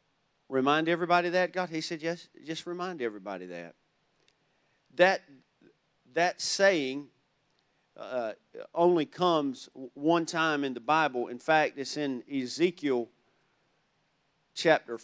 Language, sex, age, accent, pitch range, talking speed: English, male, 50-69, American, 140-170 Hz, 110 wpm